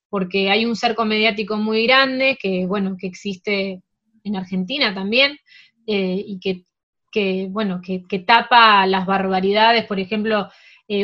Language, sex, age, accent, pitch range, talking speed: Spanish, female, 20-39, Argentinian, 195-240 Hz, 145 wpm